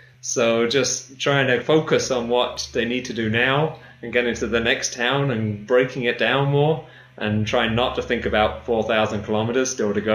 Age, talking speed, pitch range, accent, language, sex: 30-49, 200 wpm, 105-125 Hz, British, English, male